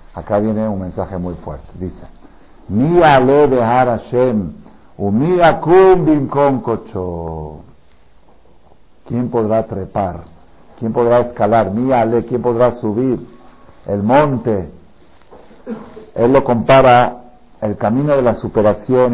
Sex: male